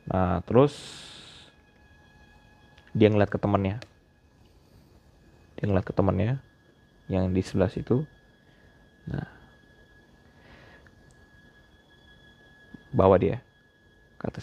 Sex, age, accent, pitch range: male, 20-39, native, 95-115 Hz